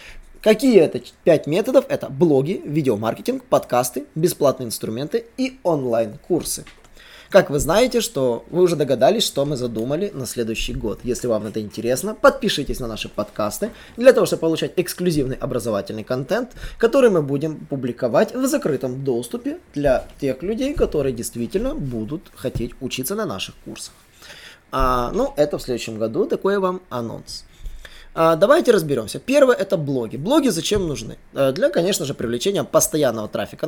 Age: 20-39